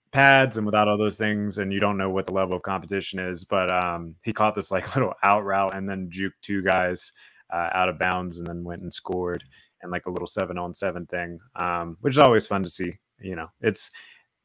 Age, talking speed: 20-39, 235 wpm